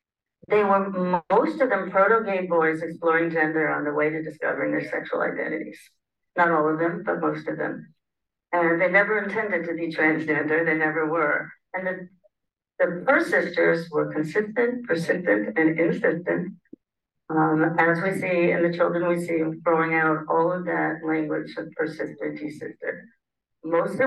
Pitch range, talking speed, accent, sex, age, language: 160-190 Hz, 160 wpm, American, female, 50-69, English